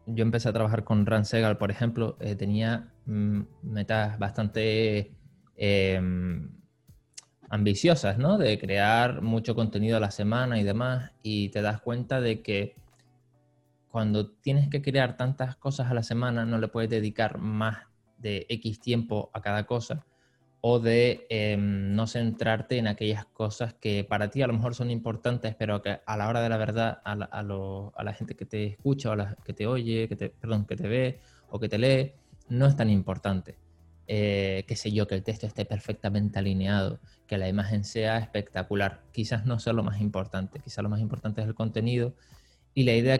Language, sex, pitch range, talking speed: Spanish, male, 105-120 Hz, 190 wpm